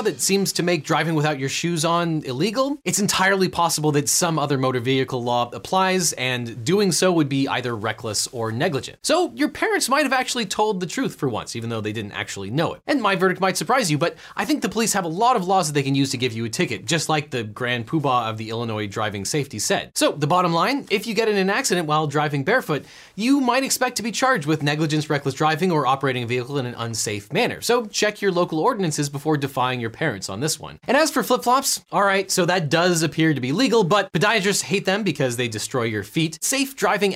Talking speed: 240 wpm